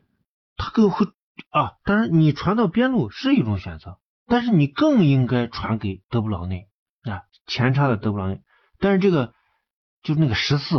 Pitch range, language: 110-185 Hz, Chinese